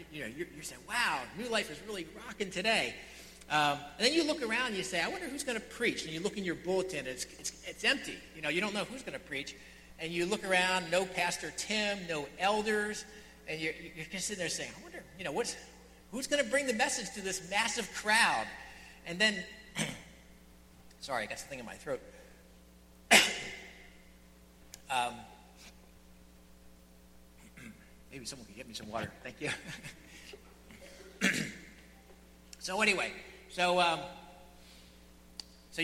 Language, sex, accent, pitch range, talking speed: English, male, American, 145-215 Hz, 165 wpm